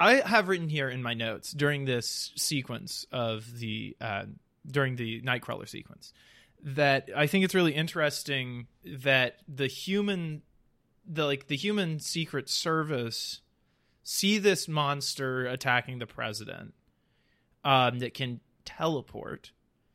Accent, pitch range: American, 125-160 Hz